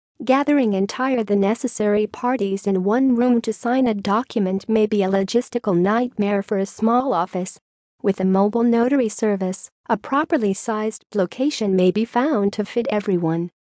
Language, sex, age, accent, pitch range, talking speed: English, female, 40-59, American, 195-240 Hz, 160 wpm